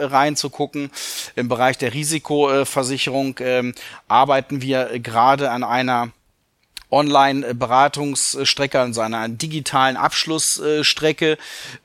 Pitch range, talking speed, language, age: 125-145 Hz, 75 wpm, German, 30-49